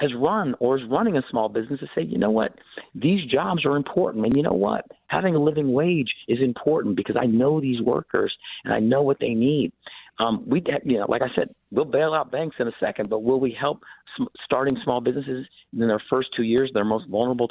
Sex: male